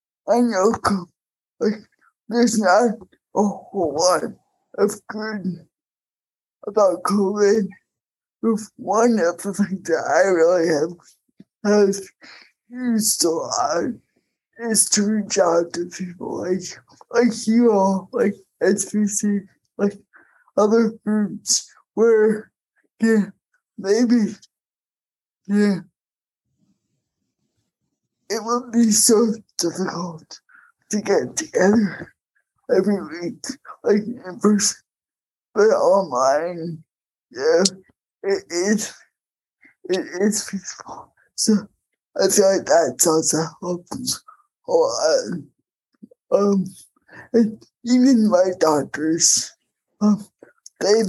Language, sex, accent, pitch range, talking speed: English, male, American, 185-225 Hz, 95 wpm